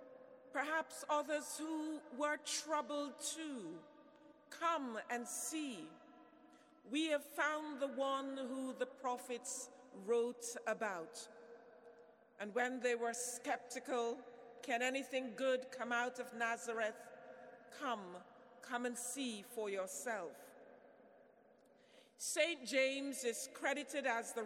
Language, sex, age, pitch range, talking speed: English, female, 50-69, 245-275 Hz, 105 wpm